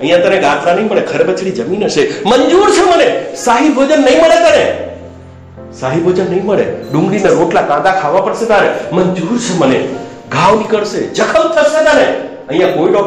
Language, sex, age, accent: Hindi, male, 60-79, native